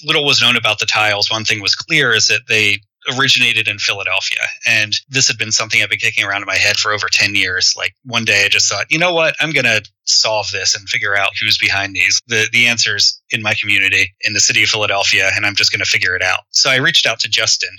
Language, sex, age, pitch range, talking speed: English, male, 30-49, 100-115 Hz, 260 wpm